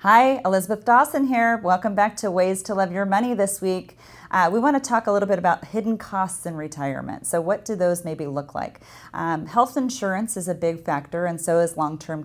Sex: female